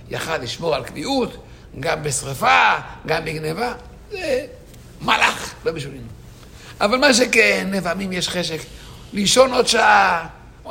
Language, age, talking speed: English, 60-79, 120 wpm